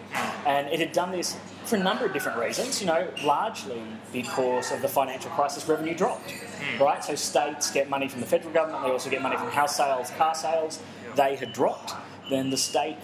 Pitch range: 130-155 Hz